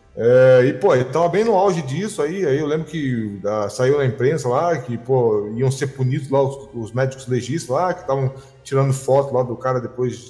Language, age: Portuguese, 20-39